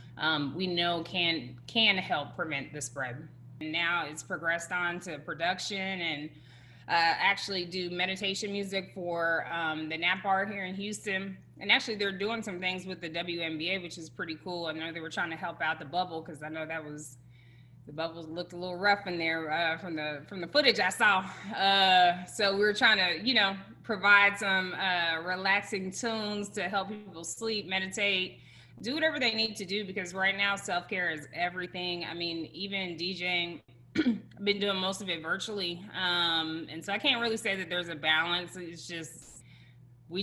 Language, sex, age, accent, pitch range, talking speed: English, female, 20-39, American, 160-195 Hz, 190 wpm